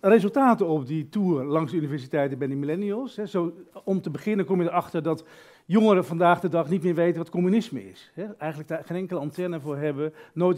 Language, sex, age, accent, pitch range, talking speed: English, male, 50-69, Dutch, 160-210 Hz, 205 wpm